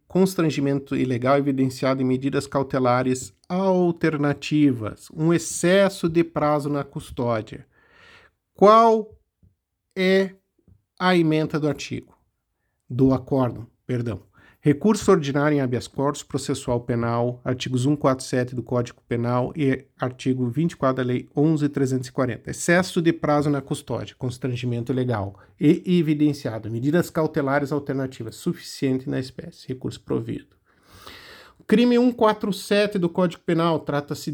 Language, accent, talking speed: Portuguese, Brazilian, 110 wpm